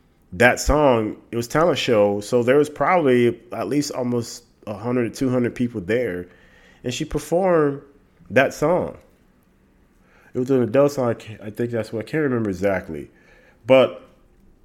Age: 30-49